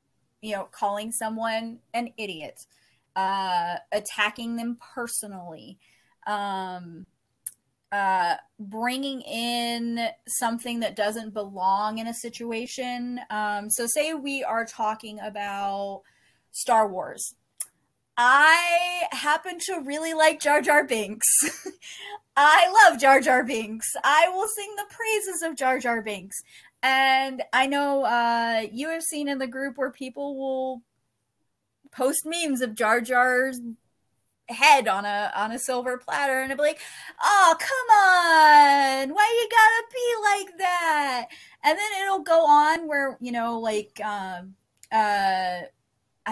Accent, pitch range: American, 210-290 Hz